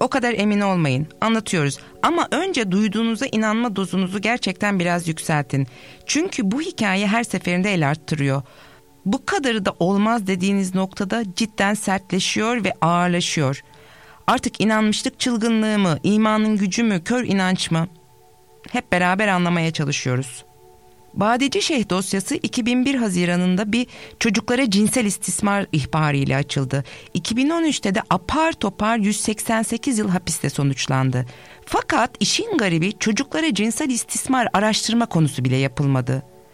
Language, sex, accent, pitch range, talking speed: Turkish, female, native, 155-230 Hz, 120 wpm